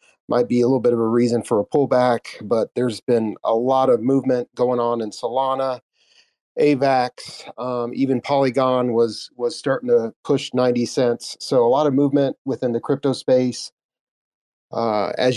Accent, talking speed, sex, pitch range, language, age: American, 170 wpm, male, 115-135 Hz, English, 40-59